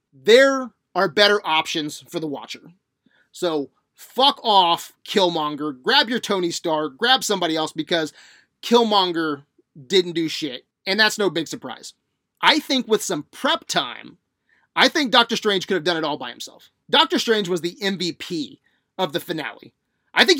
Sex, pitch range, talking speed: male, 165-235 Hz, 160 wpm